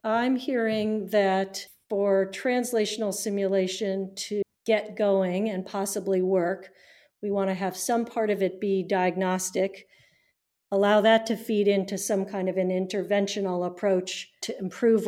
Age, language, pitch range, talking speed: 50-69, English, 185-205 Hz, 140 wpm